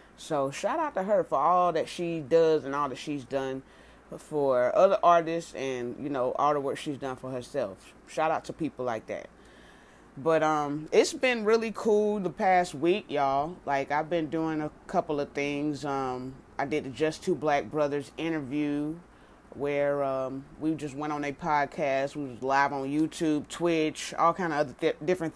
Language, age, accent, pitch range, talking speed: English, 30-49, American, 135-160 Hz, 185 wpm